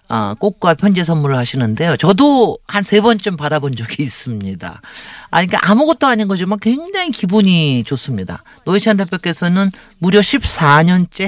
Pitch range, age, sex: 145-205 Hz, 40-59, male